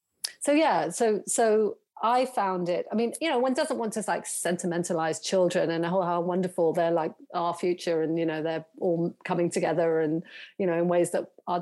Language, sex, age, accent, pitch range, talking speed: English, female, 40-59, British, 175-220 Hz, 200 wpm